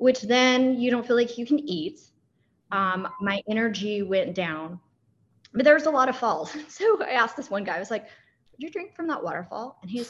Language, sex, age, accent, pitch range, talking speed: English, female, 20-39, American, 180-245 Hz, 225 wpm